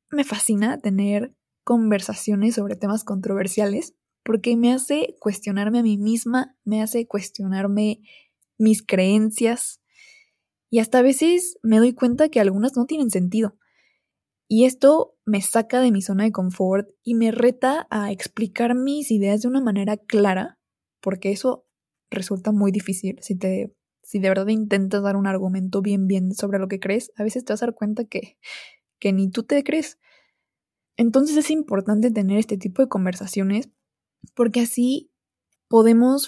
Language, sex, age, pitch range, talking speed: Spanish, female, 20-39, 200-245 Hz, 155 wpm